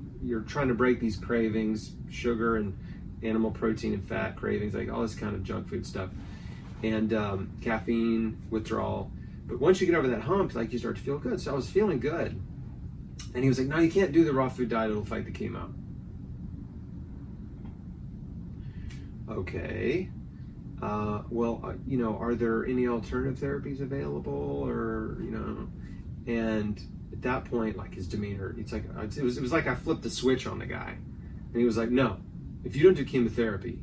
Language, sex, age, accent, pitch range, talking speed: English, male, 30-49, American, 105-125 Hz, 185 wpm